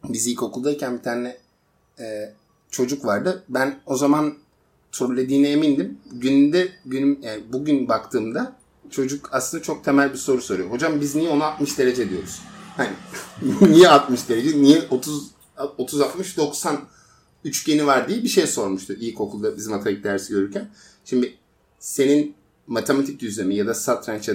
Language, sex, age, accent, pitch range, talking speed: Turkish, male, 50-69, native, 115-145 Hz, 145 wpm